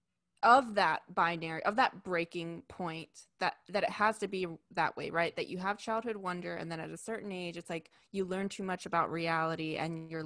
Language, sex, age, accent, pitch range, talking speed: English, female, 20-39, American, 170-225 Hz, 215 wpm